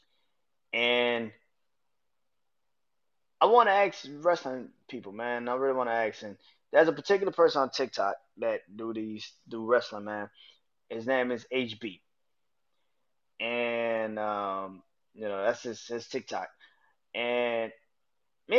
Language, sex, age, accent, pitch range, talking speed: English, male, 20-39, American, 115-160 Hz, 130 wpm